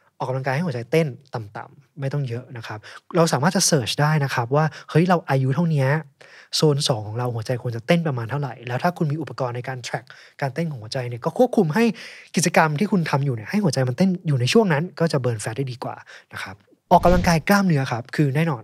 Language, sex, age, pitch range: Thai, male, 20-39, 120-155 Hz